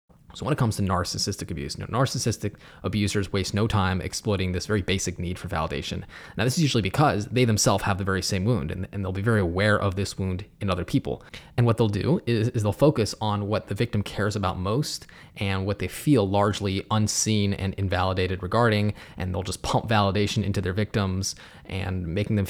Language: English